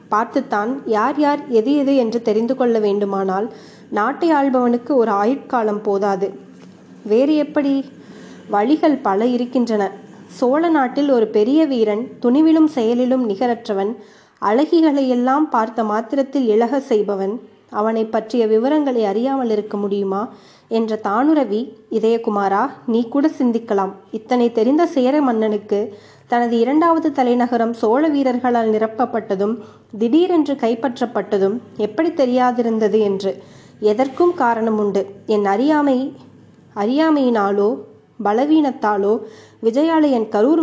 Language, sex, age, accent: Tamil, female, 20-39, native